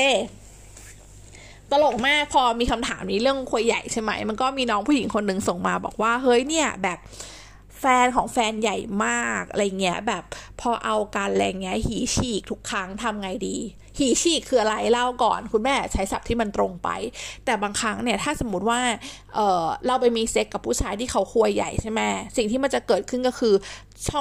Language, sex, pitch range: Thai, female, 200-255 Hz